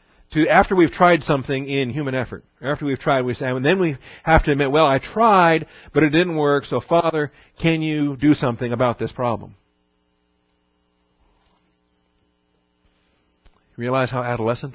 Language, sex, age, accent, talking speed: English, male, 50-69, American, 155 wpm